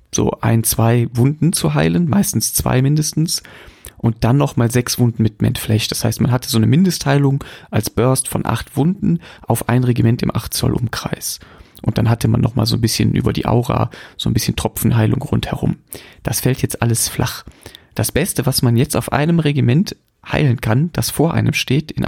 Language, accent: German, German